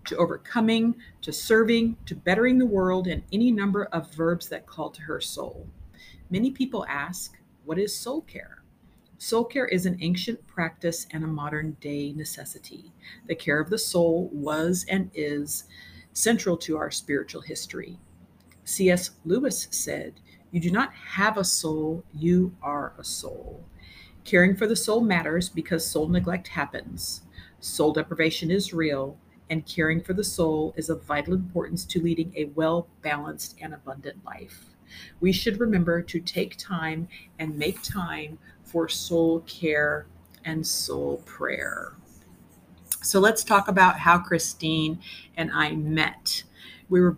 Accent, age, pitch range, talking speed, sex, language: American, 50-69, 155-190 Hz, 150 wpm, female, English